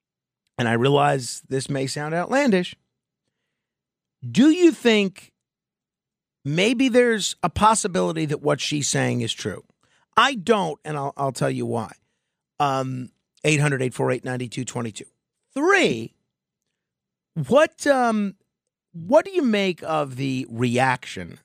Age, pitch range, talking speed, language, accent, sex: 50-69, 140-205 Hz, 105 wpm, English, American, male